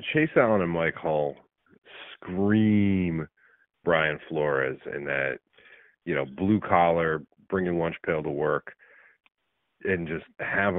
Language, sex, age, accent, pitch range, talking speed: English, male, 40-59, American, 85-105 Hz, 120 wpm